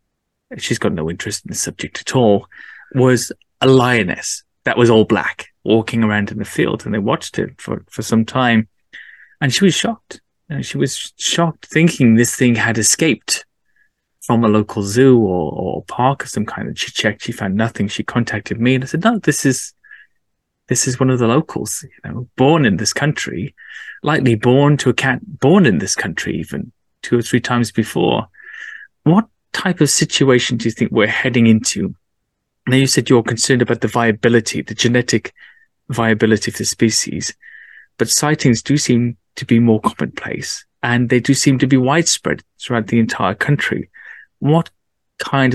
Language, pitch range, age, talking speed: English, 110-135 Hz, 20-39, 185 wpm